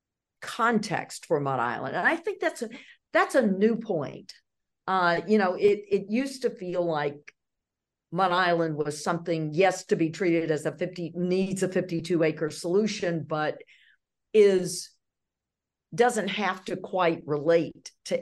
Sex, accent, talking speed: female, American, 150 wpm